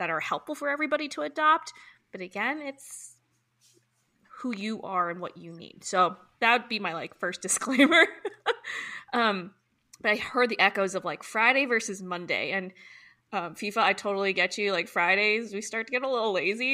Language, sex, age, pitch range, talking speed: English, female, 20-39, 180-250 Hz, 185 wpm